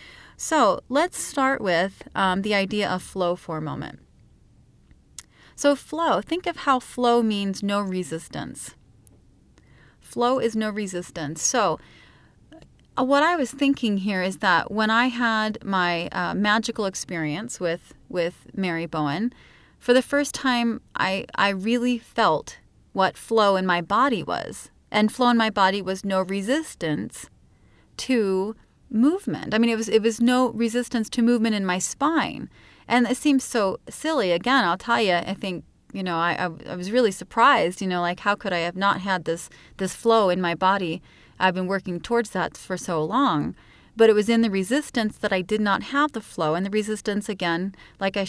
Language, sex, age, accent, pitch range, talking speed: English, female, 30-49, American, 180-235 Hz, 175 wpm